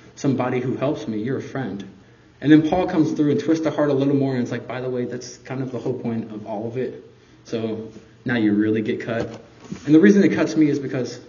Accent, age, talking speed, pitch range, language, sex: American, 20-39, 260 wpm, 110-135 Hz, German, male